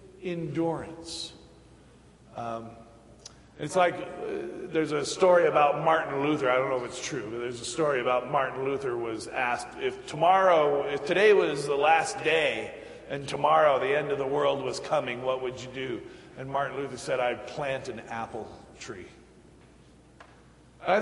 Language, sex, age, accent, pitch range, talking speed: English, male, 40-59, American, 125-165 Hz, 165 wpm